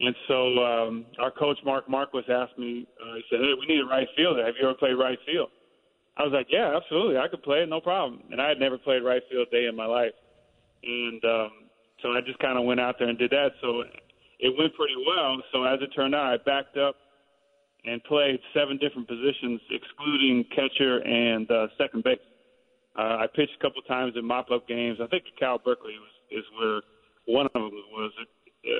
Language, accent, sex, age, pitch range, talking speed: English, American, male, 30-49, 120-140 Hz, 215 wpm